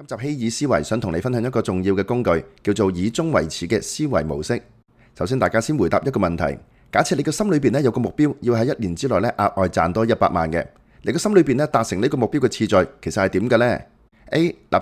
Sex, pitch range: male, 95-140 Hz